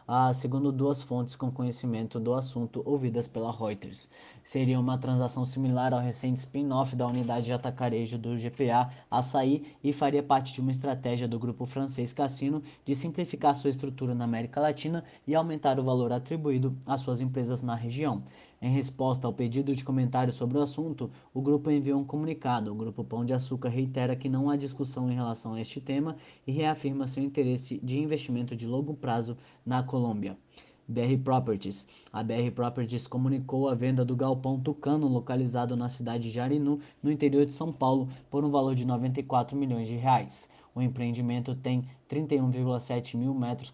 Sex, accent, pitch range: male, Brazilian, 120-140 Hz